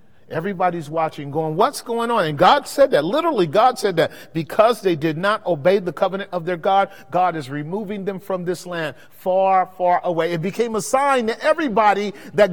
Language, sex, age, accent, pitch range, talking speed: English, male, 40-59, American, 155-215 Hz, 195 wpm